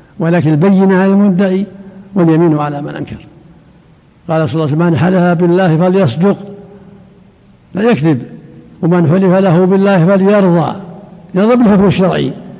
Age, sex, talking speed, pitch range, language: 60-79, male, 125 wpm, 160-195 Hz, Arabic